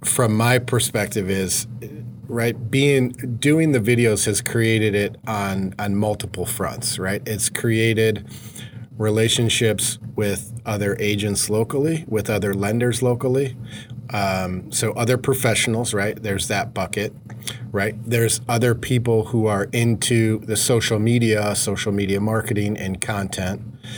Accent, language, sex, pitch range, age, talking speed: American, English, male, 105-120 Hz, 40-59, 130 wpm